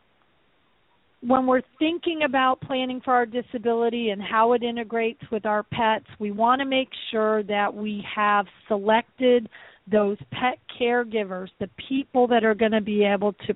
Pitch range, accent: 210-245 Hz, American